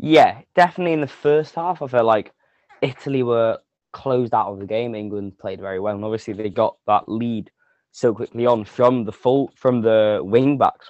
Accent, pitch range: British, 105-130 Hz